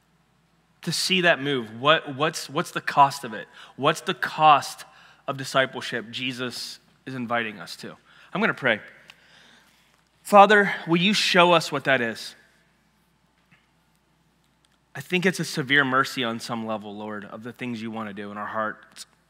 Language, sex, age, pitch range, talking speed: English, male, 30-49, 120-170 Hz, 160 wpm